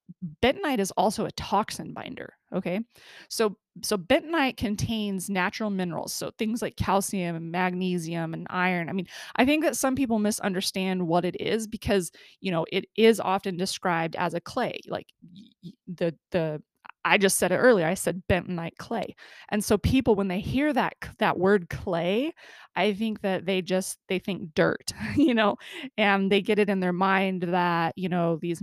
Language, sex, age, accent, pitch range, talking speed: English, female, 20-39, American, 175-210 Hz, 180 wpm